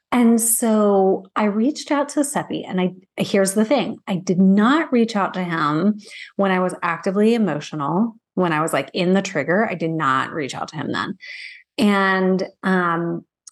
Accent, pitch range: American, 185-230 Hz